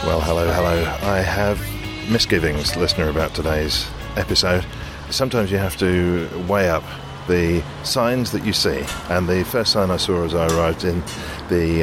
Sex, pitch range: male, 80-100 Hz